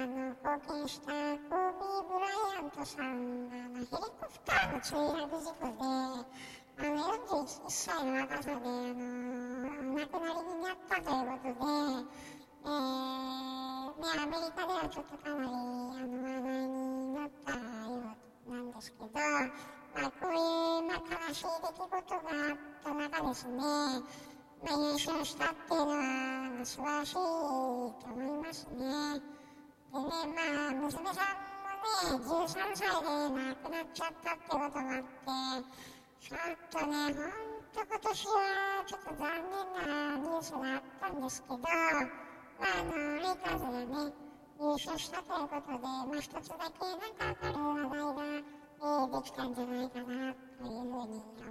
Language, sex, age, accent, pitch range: Japanese, male, 10-29, American, 260-330 Hz